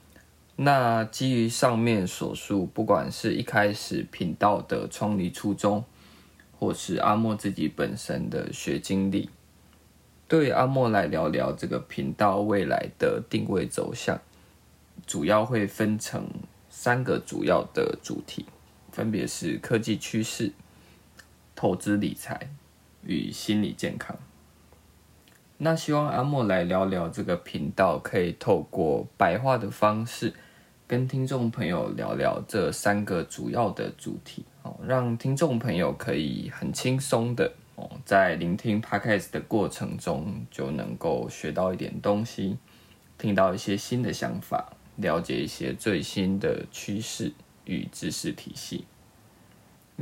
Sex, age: male, 20-39